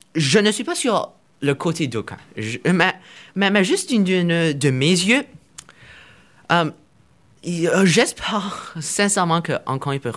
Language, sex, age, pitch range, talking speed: French, male, 20-39, 125-170 Hz, 150 wpm